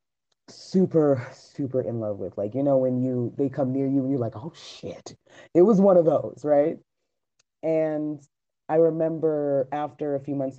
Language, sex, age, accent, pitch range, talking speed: English, female, 30-49, American, 140-185 Hz, 180 wpm